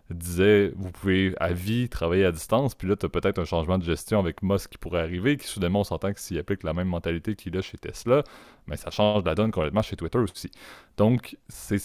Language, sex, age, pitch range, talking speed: French, male, 30-49, 85-100 Hz, 240 wpm